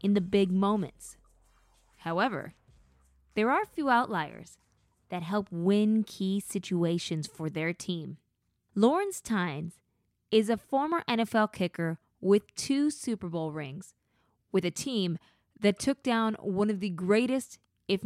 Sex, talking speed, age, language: female, 135 wpm, 20-39, English